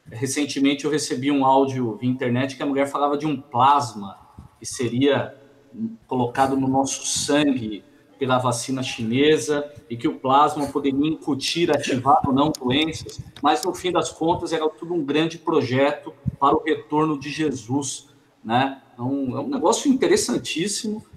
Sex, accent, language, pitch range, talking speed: male, Brazilian, Portuguese, 135-170 Hz, 155 wpm